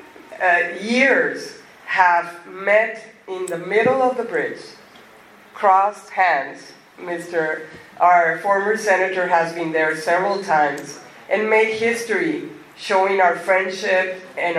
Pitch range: 170-205 Hz